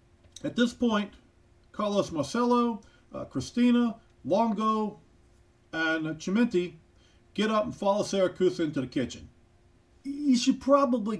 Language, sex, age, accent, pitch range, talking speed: English, male, 40-59, American, 175-275 Hz, 120 wpm